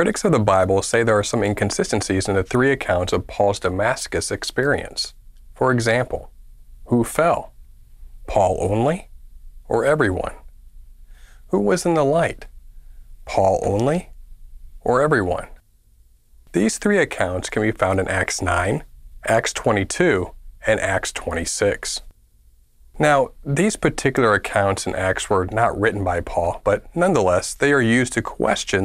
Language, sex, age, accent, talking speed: English, male, 40-59, American, 135 wpm